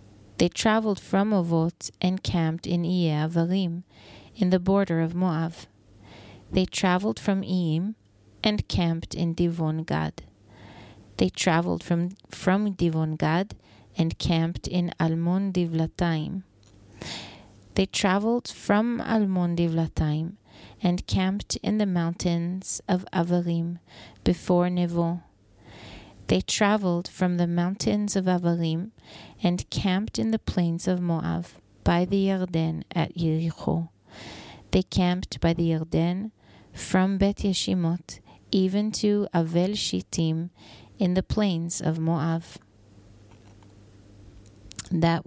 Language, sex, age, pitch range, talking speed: English, female, 30-49, 160-185 Hz, 115 wpm